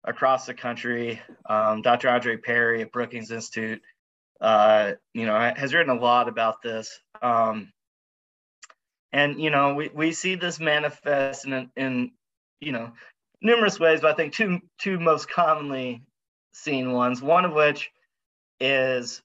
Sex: male